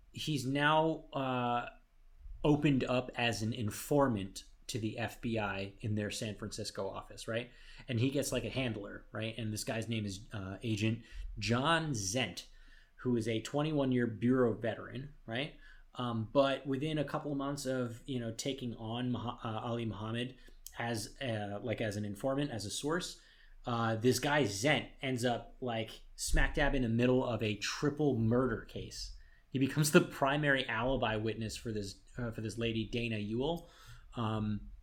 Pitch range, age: 110-125 Hz, 30-49